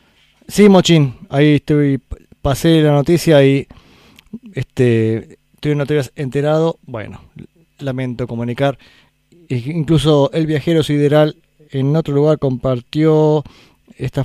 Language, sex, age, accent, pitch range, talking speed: Spanish, male, 20-39, Argentinian, 120-155 Hz, 105 wpm